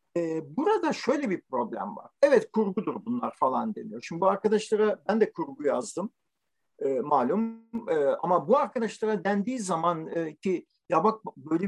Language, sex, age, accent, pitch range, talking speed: Turkish, male, 50-69, native, 175-230 Hz, 155 wpm